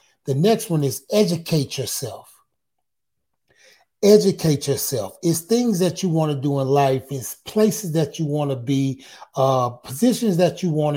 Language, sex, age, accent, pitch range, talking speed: English, male, 30-49, American, 135-185 Hz, 160 wpm